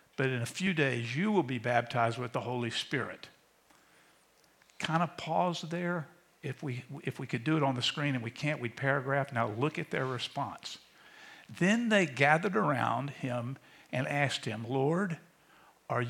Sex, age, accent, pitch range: male, 60-79, American, 125-155 Hz